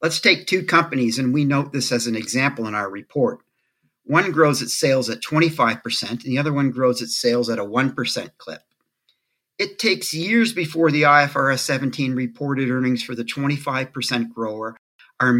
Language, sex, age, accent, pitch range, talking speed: English, male, 50-69, American, 120-155 Hz, 175 wpm